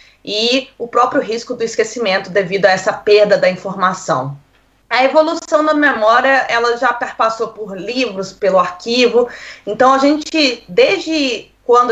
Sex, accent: female, Brazilian